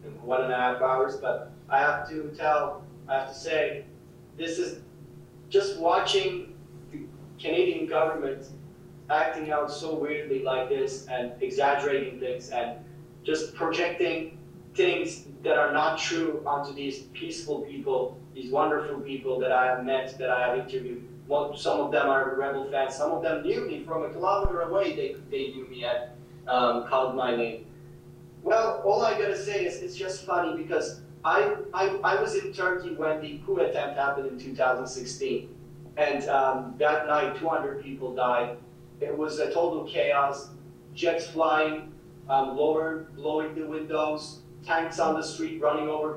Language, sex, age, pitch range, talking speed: English, male, 30-49, 135-165 Hz, 165 wpm